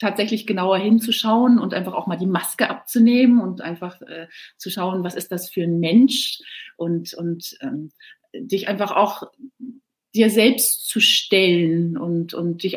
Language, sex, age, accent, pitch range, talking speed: German, female, 30-49, German, 170-220 Hz, 160 wpm